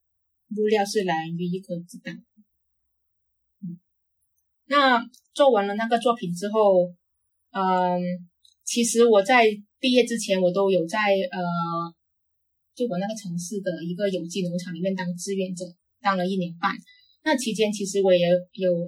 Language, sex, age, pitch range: Chinese, female, 20-39, 175-210 Hz